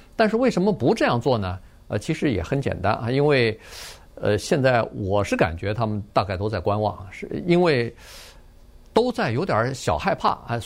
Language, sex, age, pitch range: Chinese, male, 50-69, 105-155 Hz